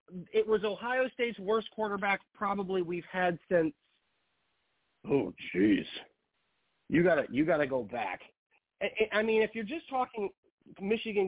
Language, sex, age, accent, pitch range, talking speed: English, male, 40-59, American, 175-250 Hz, 145 wpm